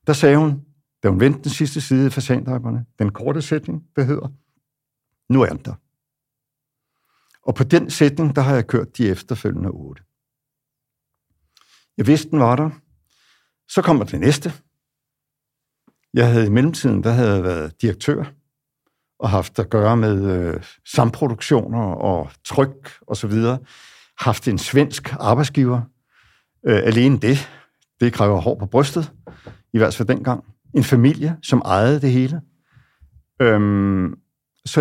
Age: 60-79